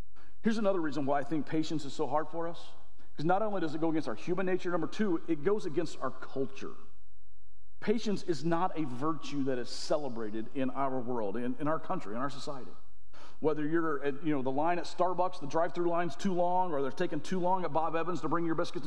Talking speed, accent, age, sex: 235 wpm, American, 40-59, male